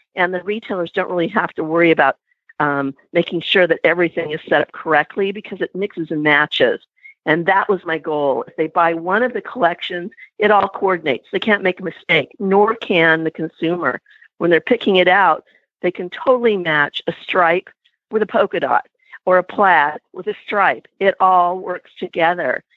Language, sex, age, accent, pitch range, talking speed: English, female, 50-69, American, 175-235 Hz, 190 wpm